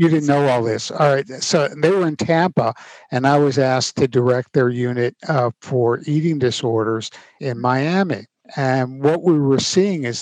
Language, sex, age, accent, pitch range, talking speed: English, male, 60-79, American, 120-150 Hz, 190 wpm